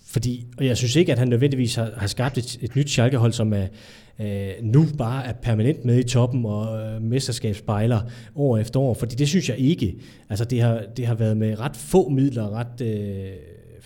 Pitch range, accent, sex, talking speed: 110-130 Hz, native, male, 210 wpm